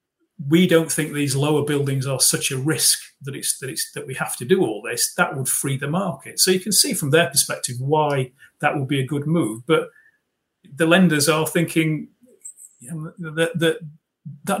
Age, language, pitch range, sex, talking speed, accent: 40-59, English, 130-160 Hz, male, 205 wpm, British